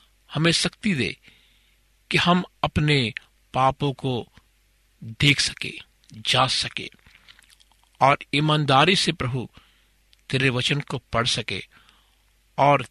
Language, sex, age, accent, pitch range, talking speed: Hindi, male, 50-69, native, 115-145 Hz, 100 wpm